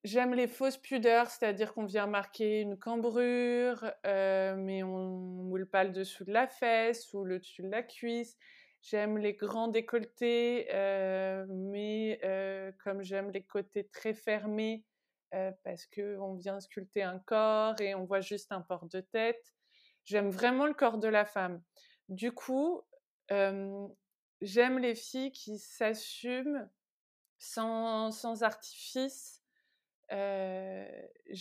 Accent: French